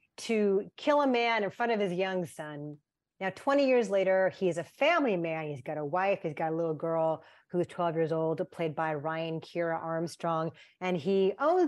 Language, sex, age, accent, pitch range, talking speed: English, female, 30-49, American, 170-220 Hz, 200 wpm